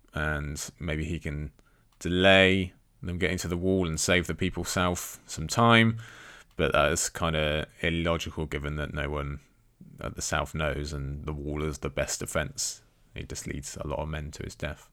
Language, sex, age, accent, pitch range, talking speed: English, male, 20-39, British, 75-95 Hz, 195 wpm